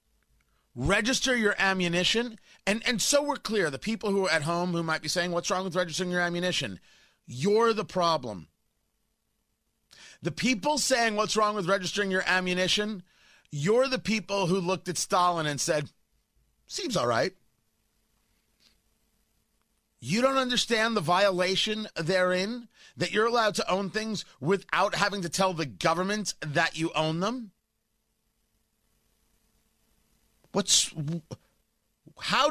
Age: 30-49